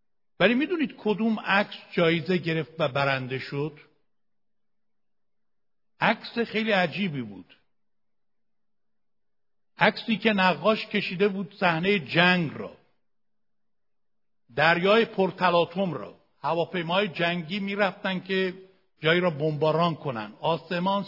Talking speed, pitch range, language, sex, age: 95 wpm, 160-215 Hz, Persian, male, 60-79